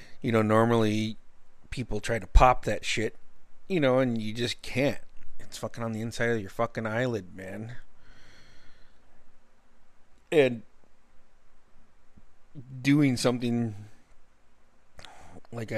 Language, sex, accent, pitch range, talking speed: English, male, American, 110-125 Hz, 110 wpm